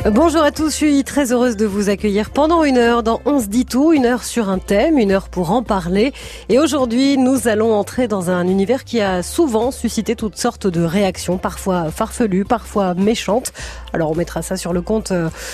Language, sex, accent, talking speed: French, female, French, 215 wpm